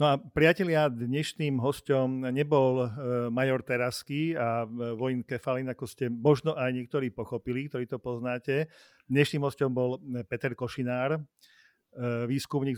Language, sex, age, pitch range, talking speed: Slovak, male, 50-69, 120-140 Hz, 120 wpm